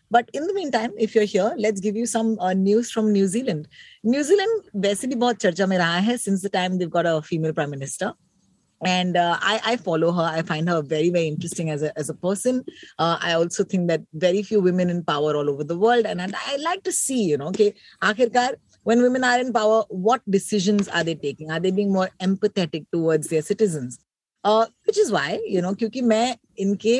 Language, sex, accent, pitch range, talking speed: Hindi, female, native, 170-230 Hz, 230 wpm